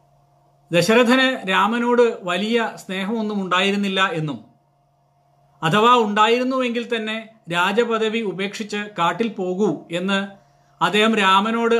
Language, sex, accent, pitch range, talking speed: Malayalam, male, native, 170-225 Hz, 80 wpm